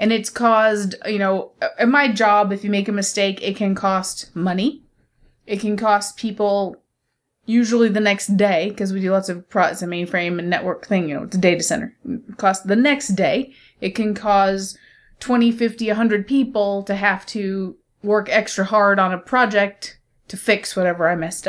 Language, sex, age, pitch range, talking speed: English, female, 30-49, 195-235 Hz, 190 wpm